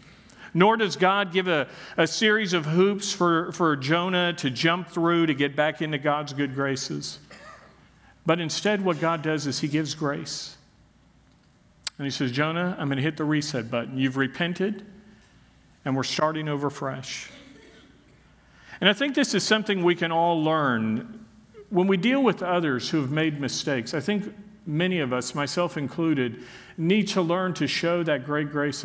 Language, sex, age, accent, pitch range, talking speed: English, male, 50-69, American, 140-175 Hz, 175 wpm